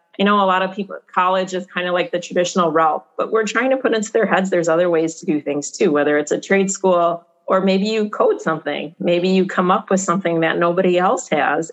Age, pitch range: 30-49, 165-200 Hz